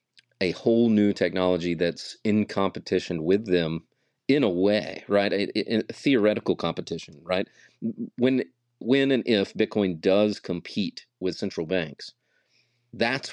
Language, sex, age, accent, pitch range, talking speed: English, male, 40-59, American, 95-120 Hz, 135 wpm